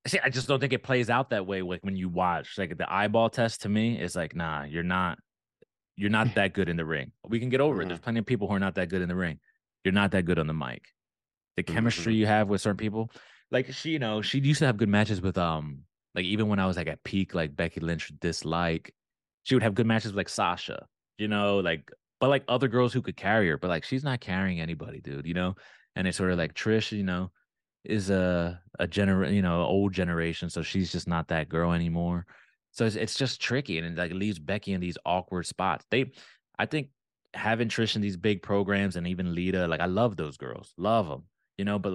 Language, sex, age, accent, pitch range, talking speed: English, male, 20-39, American, 90-115 Hz, 250 wpm